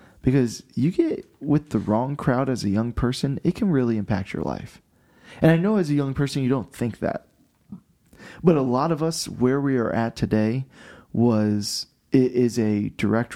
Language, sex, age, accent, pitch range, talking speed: English, male, 20-39, American, 105-125 Hz, 195 wpm